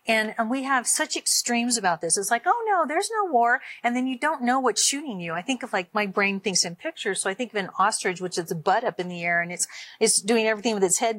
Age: 40-59